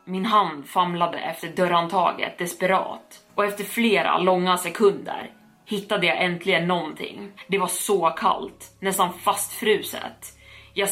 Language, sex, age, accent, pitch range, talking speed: Swedish, female, 20-39, native, 170-195 Hz, 125 wpm